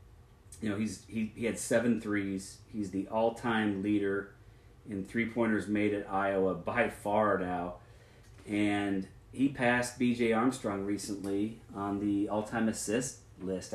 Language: English